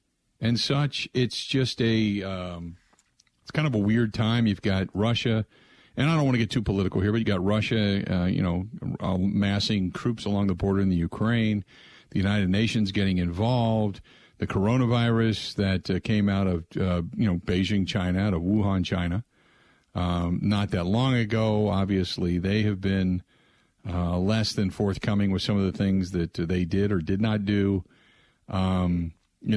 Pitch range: 90-110 Hz